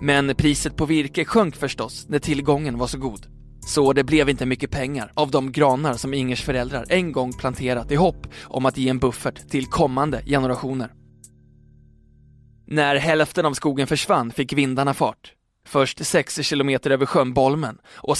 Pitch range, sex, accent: 130-155 Hz, male, native